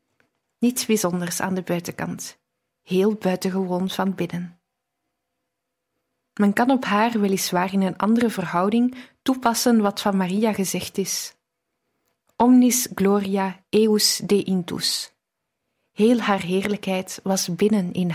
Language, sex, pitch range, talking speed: Dutch, female, 190-225 Hz, 115 wpm